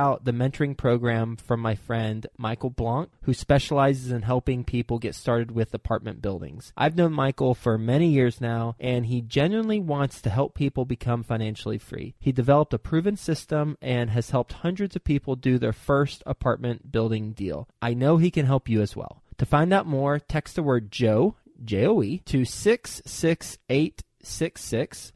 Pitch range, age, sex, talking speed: 115-145 Hz, 20-39, male, 170 wpm